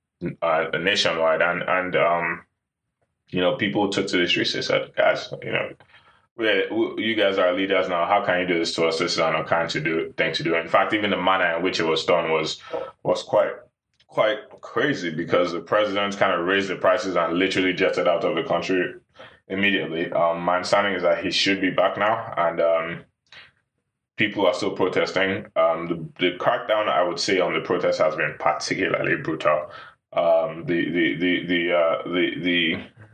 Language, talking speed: English, 190 wpm